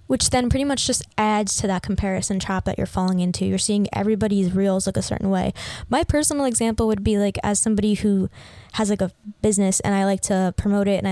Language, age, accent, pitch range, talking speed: English, 10-29, American, 195-220 Hz, 225 wpm